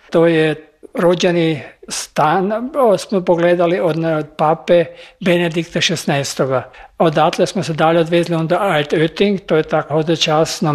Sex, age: male, 50-69